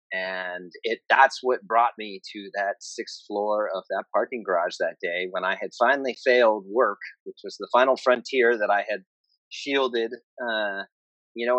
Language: English